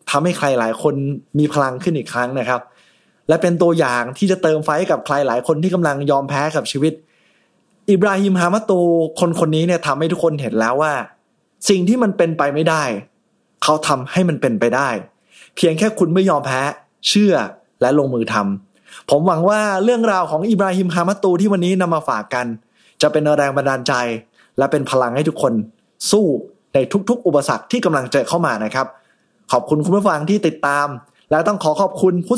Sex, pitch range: male, 140-185 Hz